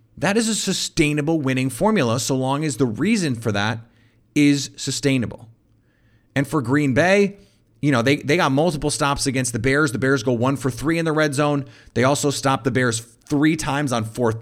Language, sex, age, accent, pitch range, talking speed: English, male, 30-49, American, 115-155 Hz, 200 wpm